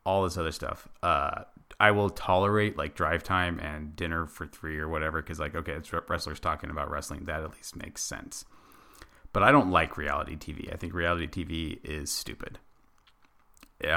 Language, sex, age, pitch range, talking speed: English, male, 30-49, 75-95 Hz, 185 wpm